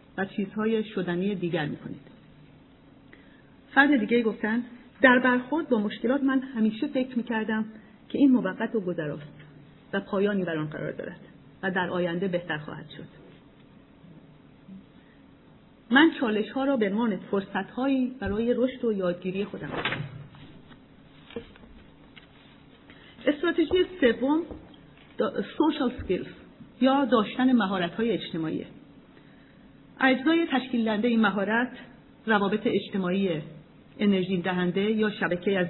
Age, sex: 40-59, female